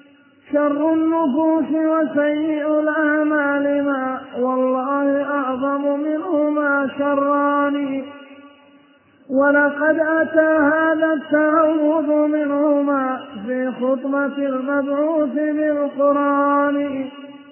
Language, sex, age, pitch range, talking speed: Arabic, male, 20-39, 280-305 Hz, 60 wpm